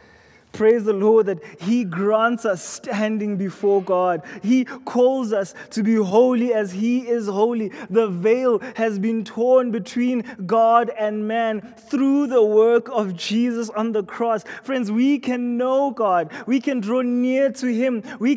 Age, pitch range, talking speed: 20-39, 180-235 Hz, 160 wpm